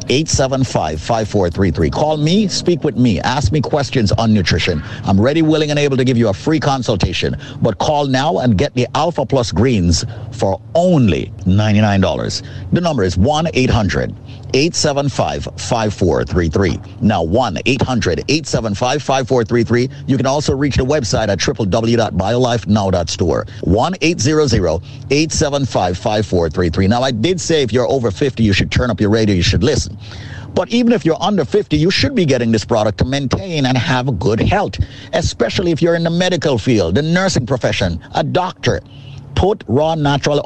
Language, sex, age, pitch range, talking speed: English, male, 50-69, 105-150 Hz, 195 wpm